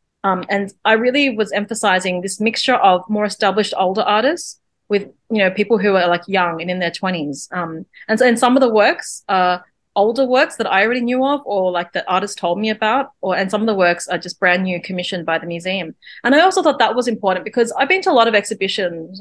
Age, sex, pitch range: 30-49, female, 185-230 Hz